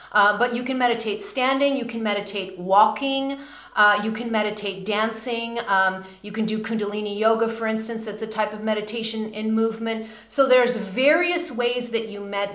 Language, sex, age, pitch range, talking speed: English, female, 40-59, 205-245 Hz, 175 wpm